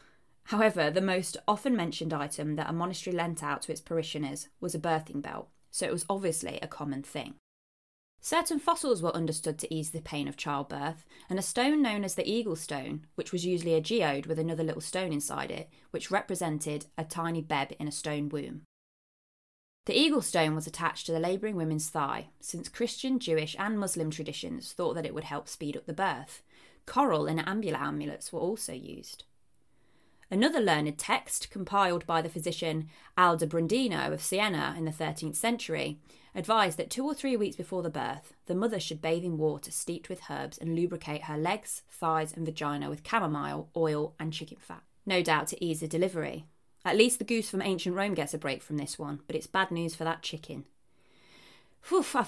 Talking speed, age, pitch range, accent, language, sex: 195 wpm, 20-39, 155-190 Hz, British, English, female